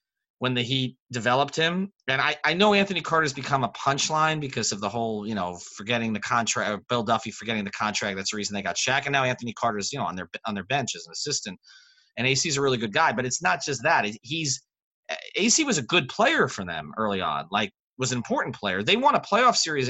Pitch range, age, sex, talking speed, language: 110-145 Hz, 30-49, male, 240 wpm, English